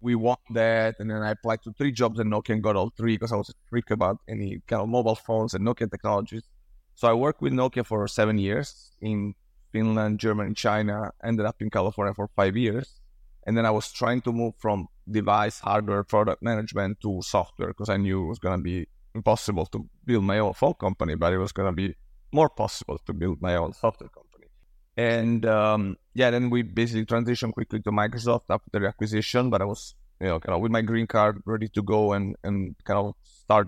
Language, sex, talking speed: English, male, 220 wpm